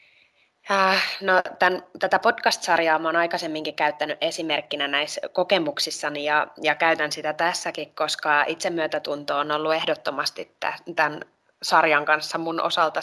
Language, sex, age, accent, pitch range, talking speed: Finnish, female, 20-39, native, 150-180 Hz, 115 wpm